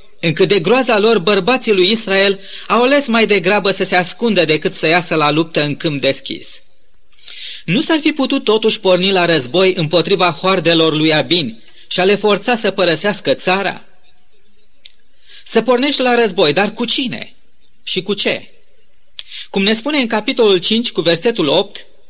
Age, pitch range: 30-49, 175-235 Hz